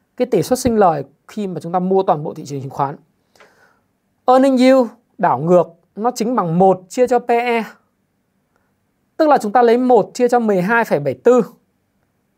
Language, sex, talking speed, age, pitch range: Vietnamese, male, 175 wpm, 20-39, 175-250 Hz